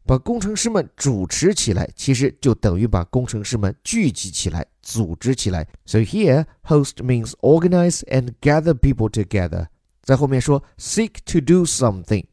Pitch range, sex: 105-155 Hz, male